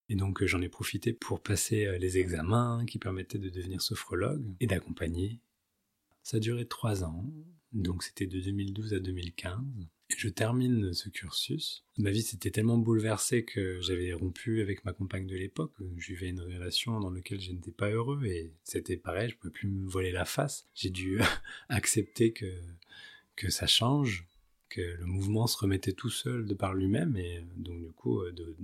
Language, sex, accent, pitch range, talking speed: French, male, French, 90-115 Hz, 180 wpm